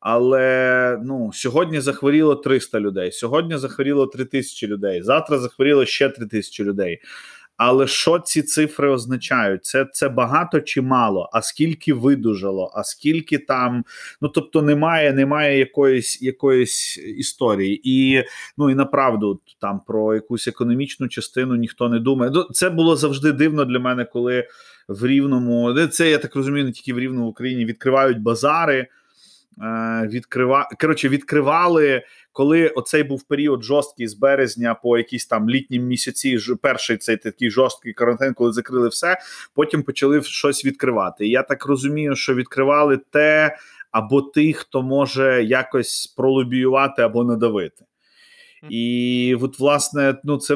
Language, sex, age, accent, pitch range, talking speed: Ukrainian, male, 30-49, native, 120-145 Hz, 140 wpm